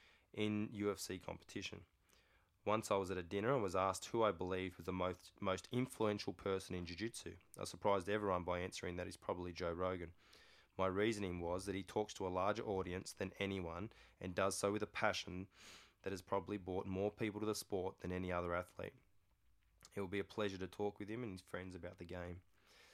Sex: male